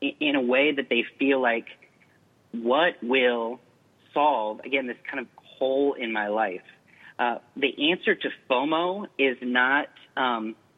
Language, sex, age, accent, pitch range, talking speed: English, male, 30-49, American, 115-140 Hz, 145 wpm